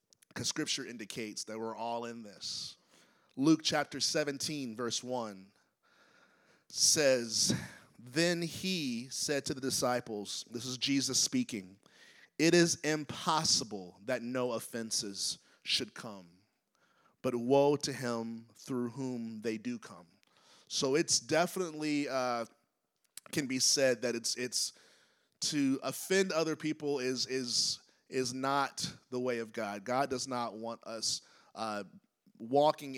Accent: American